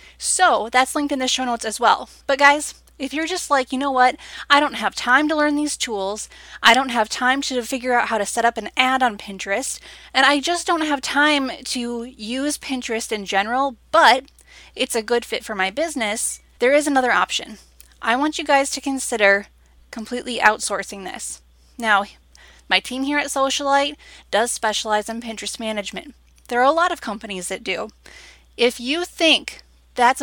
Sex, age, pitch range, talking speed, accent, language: female, 10-29, 225-280 Hz, 190 wpm, American, English